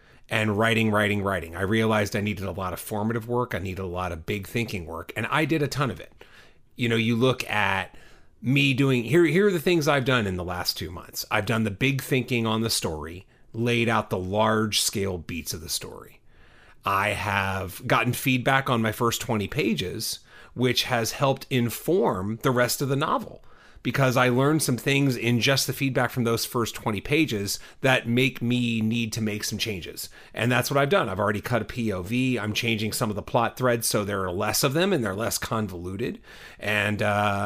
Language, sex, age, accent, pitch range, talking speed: English, male, 30-49, American, 105-125 Hz, 210 wpm